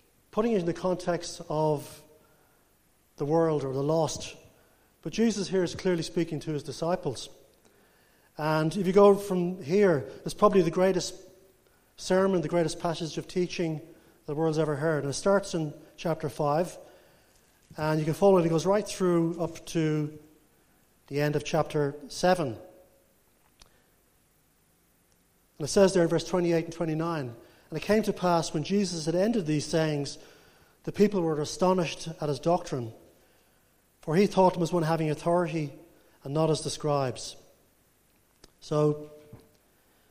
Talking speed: 155 wpm